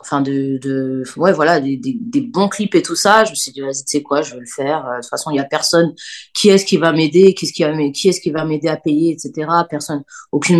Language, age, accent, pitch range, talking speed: French, 20-39, French, 140-175 Hz, 285 wpm